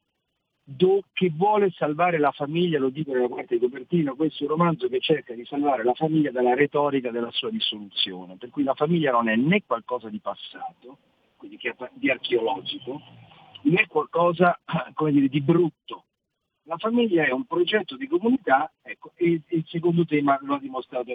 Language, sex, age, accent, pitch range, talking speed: Italian, male, 50-69, native, 140-210 Hz, 170 wpm